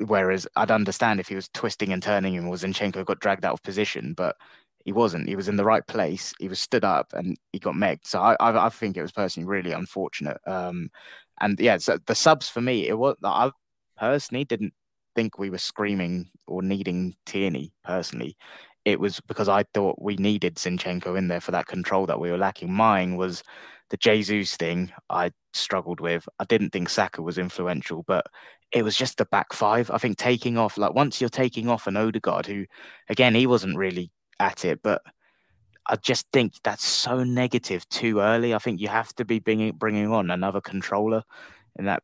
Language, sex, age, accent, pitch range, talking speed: English, male, 20-39, British, 95-110 Hz, 205 wpm